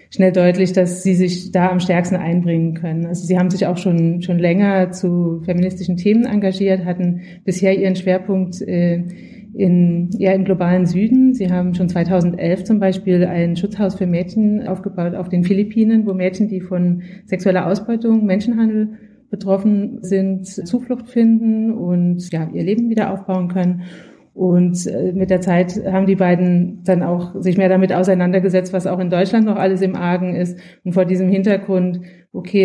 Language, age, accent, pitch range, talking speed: German, 30-49, German, 175-195 Hz, 165 wpm